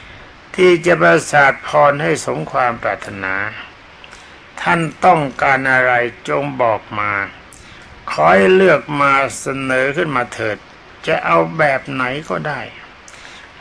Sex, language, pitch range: male, Thai, 115-160 Hz